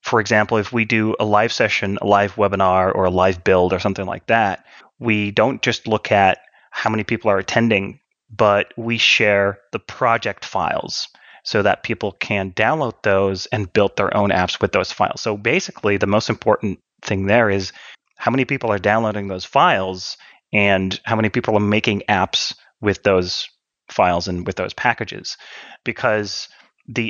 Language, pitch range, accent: English, 100-115 Hz, American